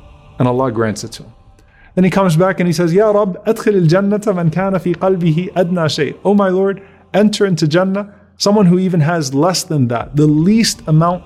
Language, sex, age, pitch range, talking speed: English, male, 30-49, 120-165 Hz, 185 wpm